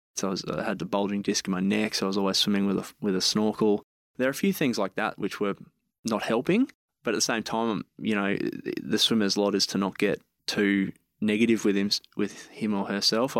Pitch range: 100-110 Hz